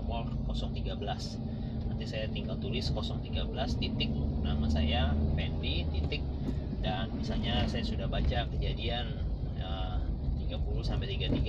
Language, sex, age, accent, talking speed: Indonesian, male, 30-49, native, 105 wpm